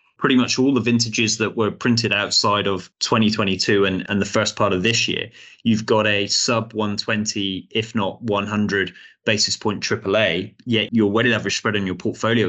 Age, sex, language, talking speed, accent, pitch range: 20-39, male, English, 185 wpm, British, 100-115 Hz